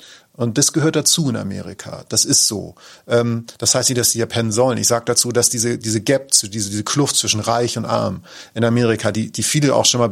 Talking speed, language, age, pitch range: 230 wpm, German, 40-59, 110-135 Hz